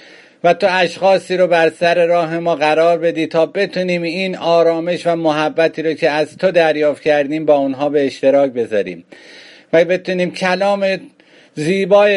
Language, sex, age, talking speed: English, male, 50-69, 155 wpm